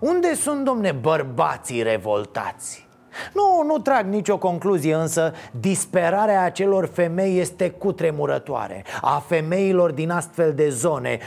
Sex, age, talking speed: male, 30-49, 115 wpm